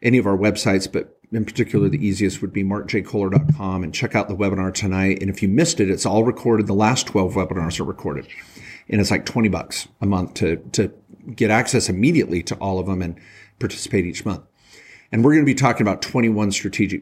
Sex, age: male, 50-69